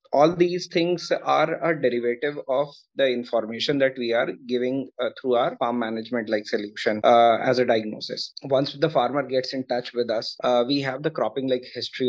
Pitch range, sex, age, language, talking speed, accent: 115-130 Hz, male, 20-39, English, 195 wpm, Indian